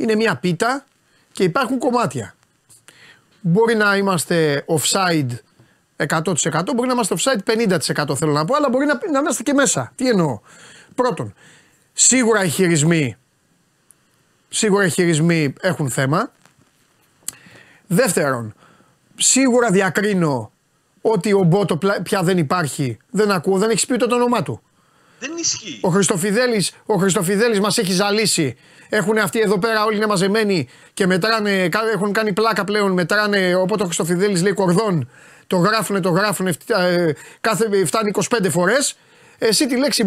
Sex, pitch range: male, 170-225 Hz